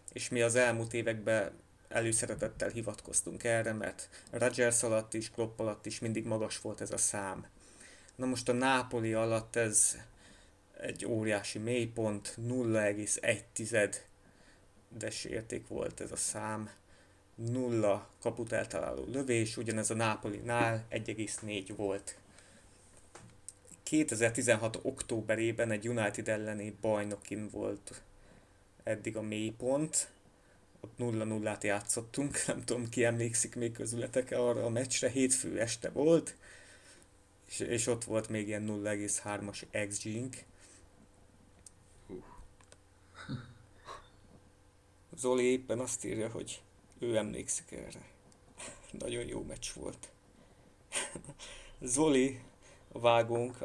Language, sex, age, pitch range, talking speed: Hungarian, male, 30-49, 100-120 Hz, 110 wpm